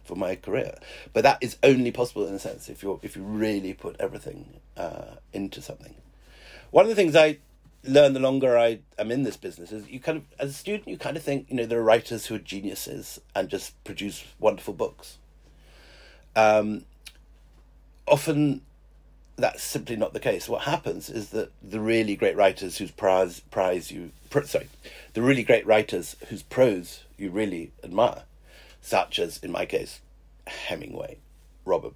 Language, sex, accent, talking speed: English, male, British, 175 wpm